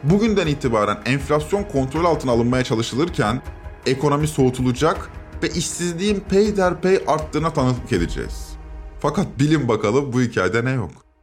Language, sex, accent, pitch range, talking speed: Turkish, male, native, 125-195 Hz, 120 wpm